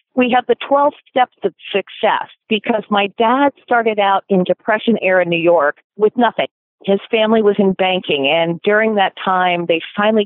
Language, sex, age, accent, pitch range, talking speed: English, female, 50-69, American, 185-240 Hz, 175 wpm